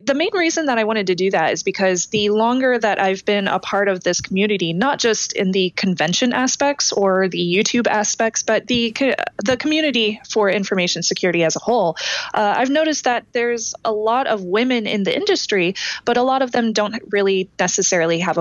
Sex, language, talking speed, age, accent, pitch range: female, English, 200 wpm, 20-39, American, 190-235 Hz